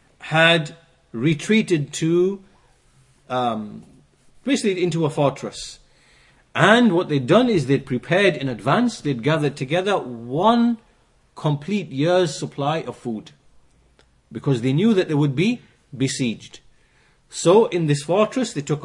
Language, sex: English, male